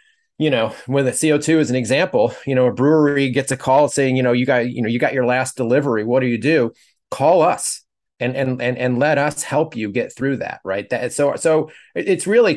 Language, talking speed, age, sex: English, 240 wpm, 30-49, male